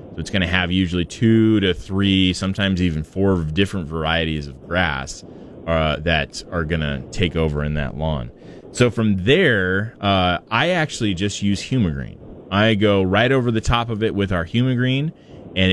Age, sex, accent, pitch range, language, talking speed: 20-39, male, American, 90-115 Hz, English, 185 wpm